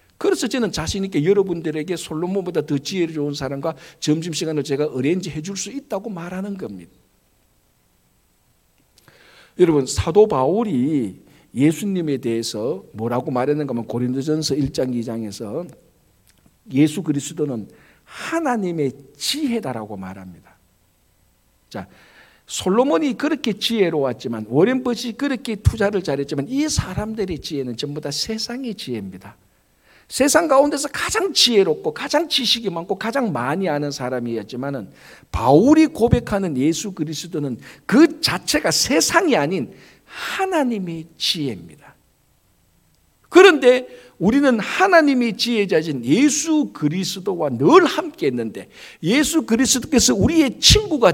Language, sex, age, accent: Korean, male, 60-79, native